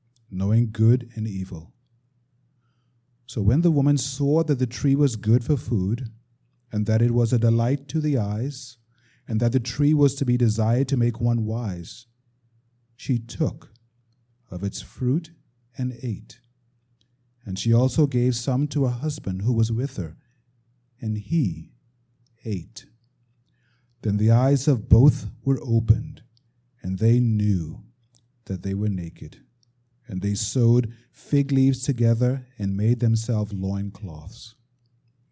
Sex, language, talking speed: male, English, 140 wpm